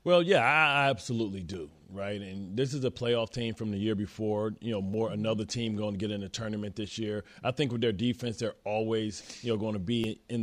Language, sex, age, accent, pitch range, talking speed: English, male, 30-49, American, 110-130 Hz, 245 wpm